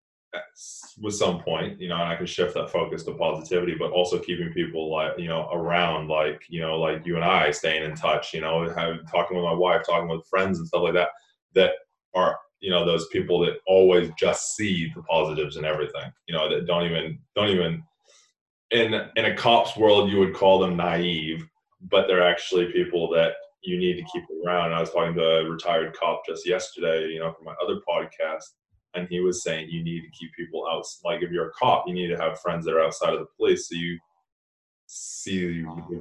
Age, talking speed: 20-39, 220 wpm